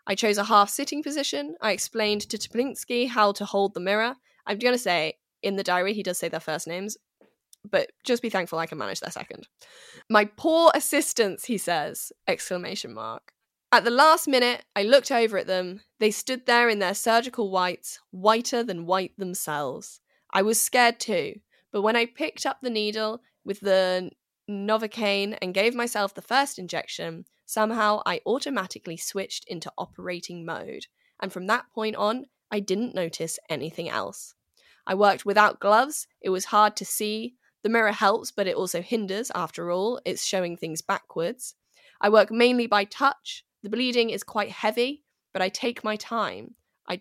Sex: female